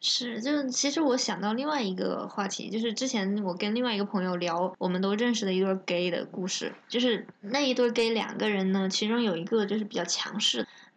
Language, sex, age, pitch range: Chinese, female, 20-39, 200-250 Hz